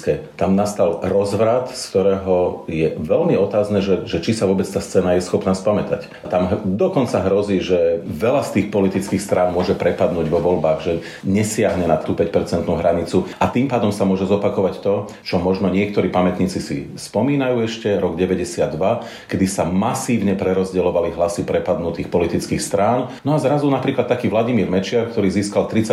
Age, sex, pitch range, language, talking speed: 40-59, male, 95-115 Hz, Slovak, 160 wpm